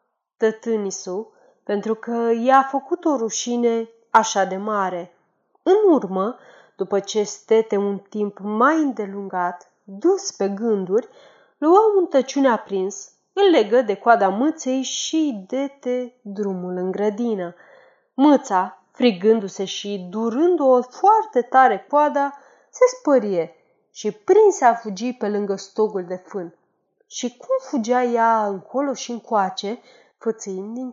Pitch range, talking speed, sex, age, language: 205-280 Hz, 120 wpm, female, 30-49, Romanian